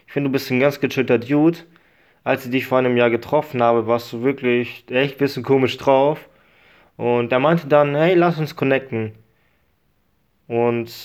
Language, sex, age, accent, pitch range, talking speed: English, male, 20-39, German, 120-145 Hz, 180 wpm